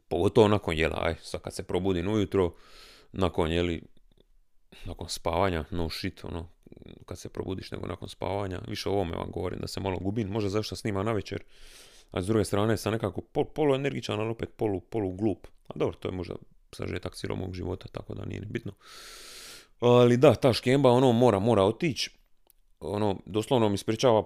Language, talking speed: Croatian, 185 wpm